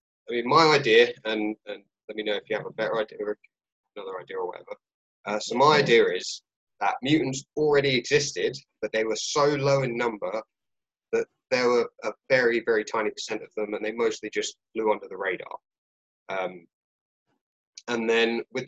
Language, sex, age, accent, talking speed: English, male, 20-39, British, 185 wpm